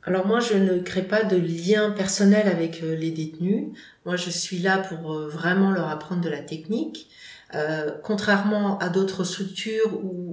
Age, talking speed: 40-59, 170 wpm